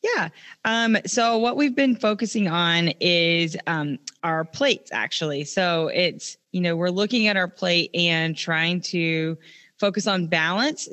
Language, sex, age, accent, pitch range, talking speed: English, female, 20-39, American, 155-190 Hz, 155 wpm